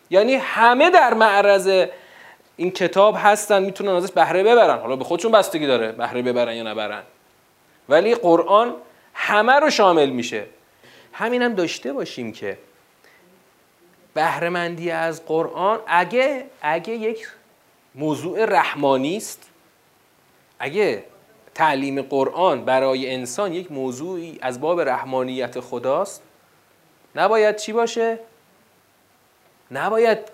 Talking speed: 105 wpm